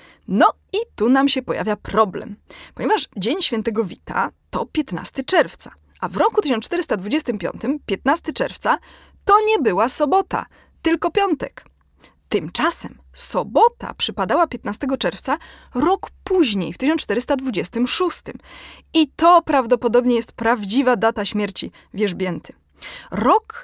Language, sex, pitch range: Polish, female, 210-310 Hz